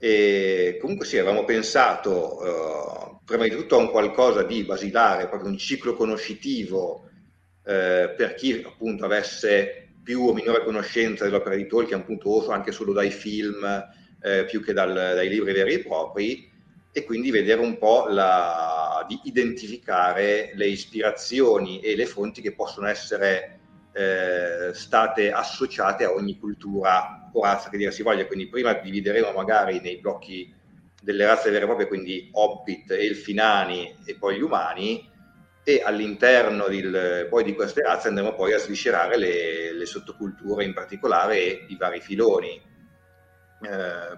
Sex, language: male, Italian